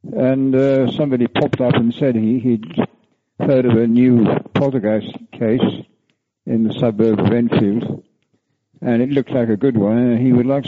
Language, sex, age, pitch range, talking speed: English, male, 60-79, 110-130 Hz, 170 wpm